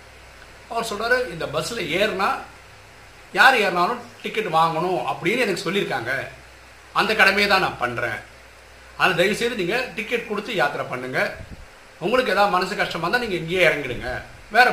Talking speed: 135 wpm